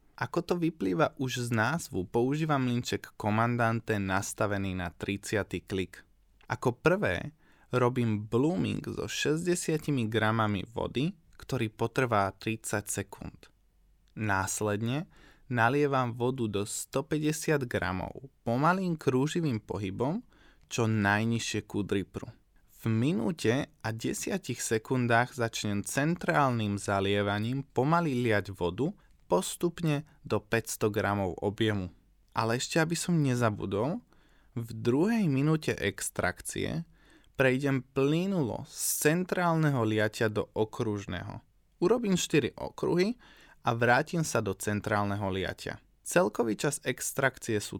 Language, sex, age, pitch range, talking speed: Slovak, male, 20-39, 100-140 Hz, 105 wpm